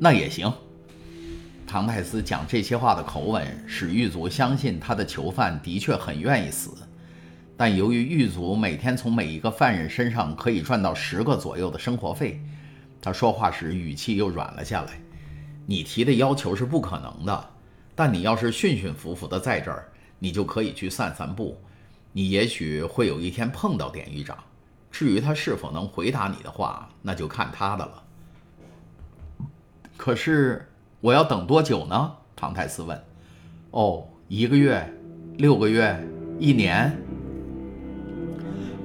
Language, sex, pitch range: Chinese, male, 85-130 Hz